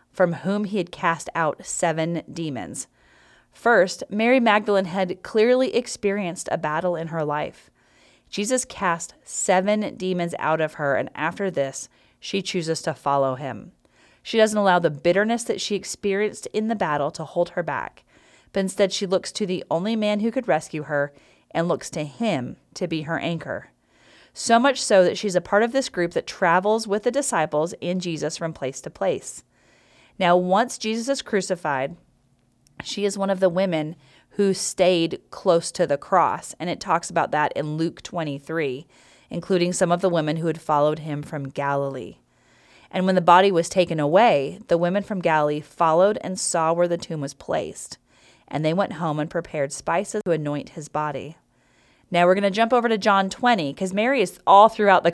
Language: English